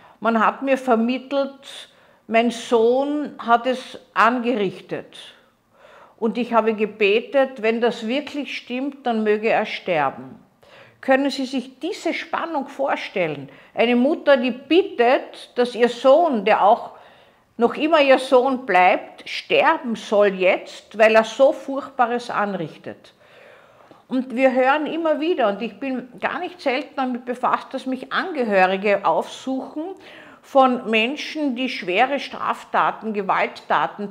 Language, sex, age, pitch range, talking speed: German, female, 50-69, 230-275 Hz, 125 wpm